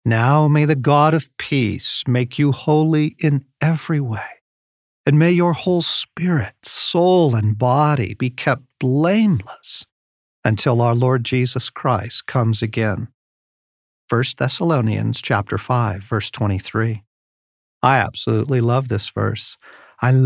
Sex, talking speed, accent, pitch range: male, 125 wpm, American, 110-150 Hz